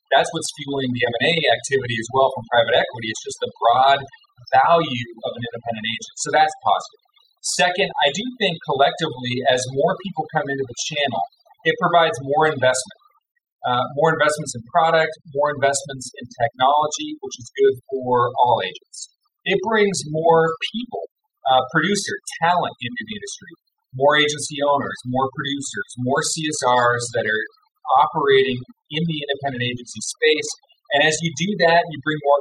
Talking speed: 160 wpm